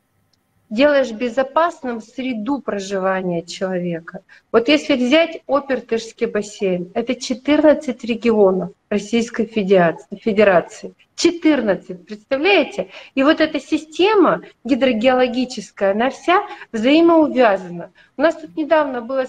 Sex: female